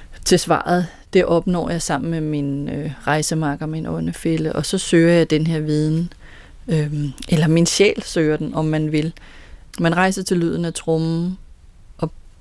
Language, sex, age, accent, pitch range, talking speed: Danish, female, 30-49, native, 160-195 Hz, 170 wpm